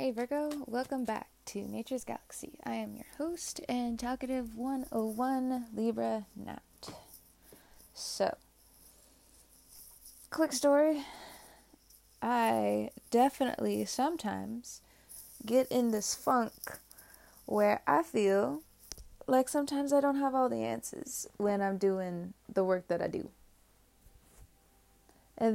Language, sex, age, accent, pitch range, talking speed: English, female, 20-39, American, 170-255 Hz, 110 wpm